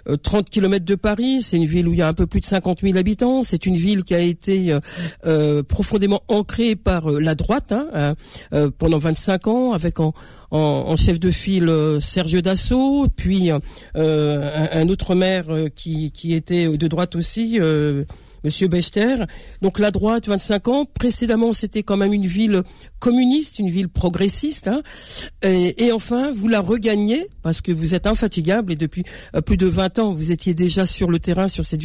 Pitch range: 160-205 Hz